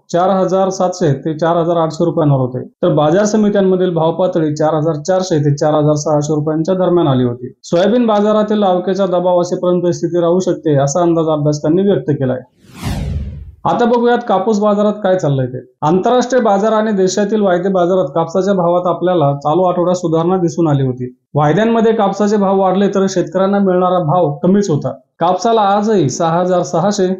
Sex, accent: male, native